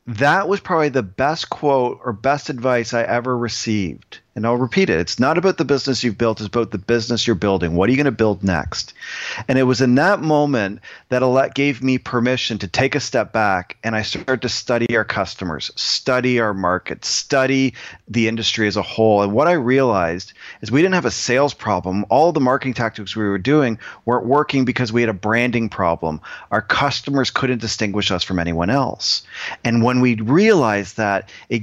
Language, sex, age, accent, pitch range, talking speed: English, male, 40-59, American, 105-130 Hz, 205 wpm